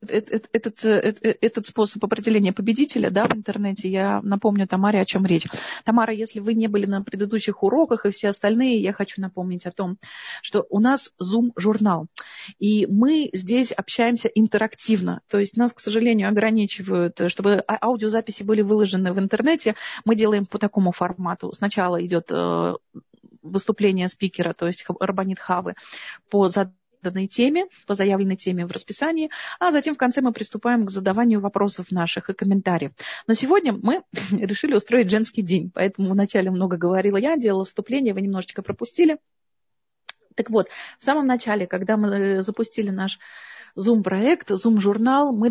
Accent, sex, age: native, female, 30-49